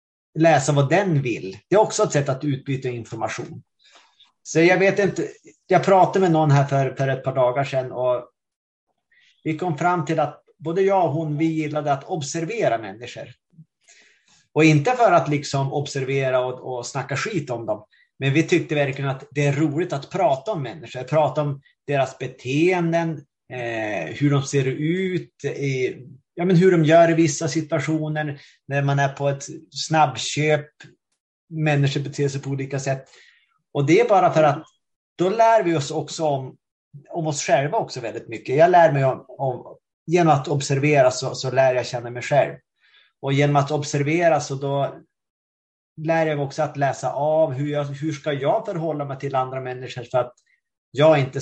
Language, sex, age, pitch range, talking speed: Swedish, male, 30-49, 135-160 Hz, 180 wpm